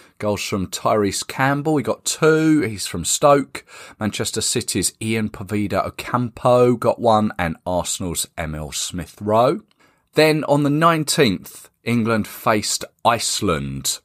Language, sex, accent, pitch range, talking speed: English, male, British, 95-140 Hz, 120 wpm